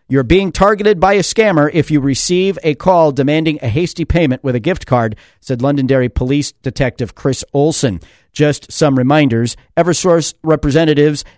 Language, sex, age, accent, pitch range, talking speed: English, male, 50-69, American, 125-155 Hz, 160 wpm